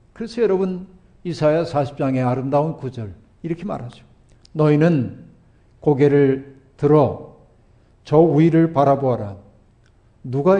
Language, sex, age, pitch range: Korean, male, 50-69, 130-180 Hz